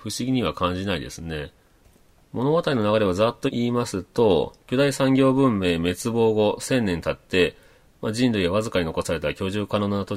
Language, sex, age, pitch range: Japanese, male, 40-59, 85-110 Hz